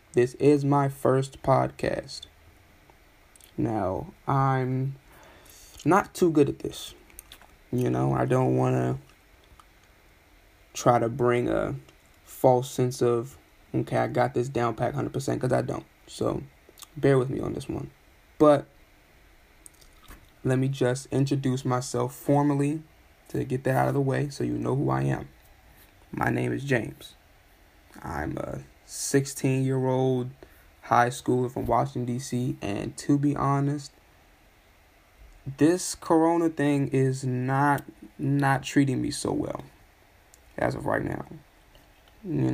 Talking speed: 135 wpm